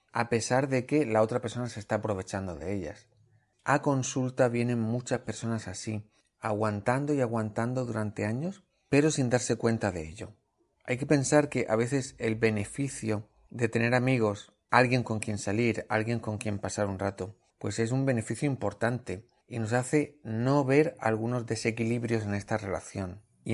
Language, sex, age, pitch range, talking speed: Spanish, male, 30-49, 105-130 Hz, 170 wpm